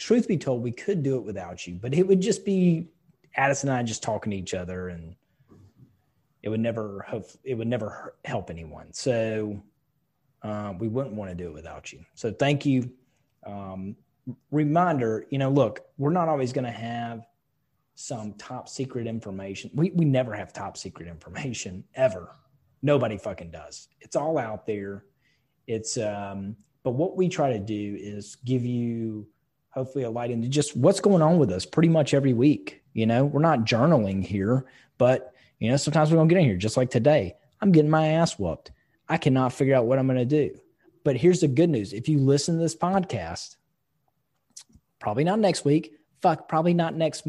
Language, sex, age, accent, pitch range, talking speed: English, male, 30-49, American, 110-150 Hz, 190 wpm